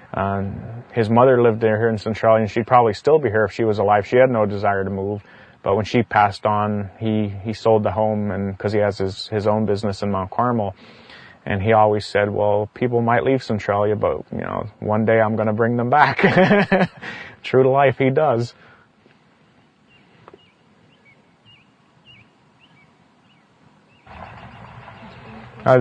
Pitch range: 105-120 Hz